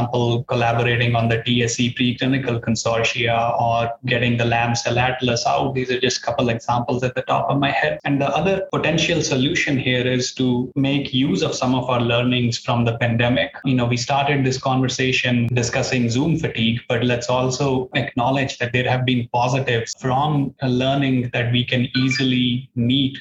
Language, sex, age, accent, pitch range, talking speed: English, male, 20-39, Indian, 120-130 Hz, 180 wpm